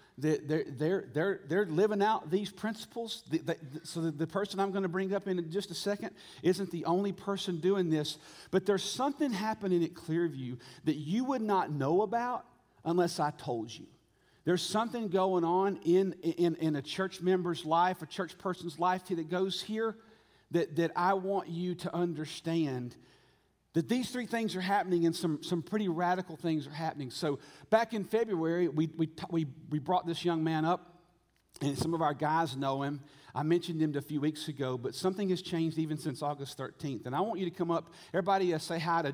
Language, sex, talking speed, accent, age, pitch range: English, male, 200 wpm, American, 40-59, 155-190 Hz